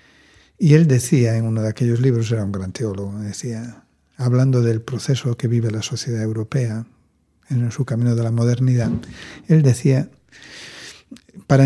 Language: Spanish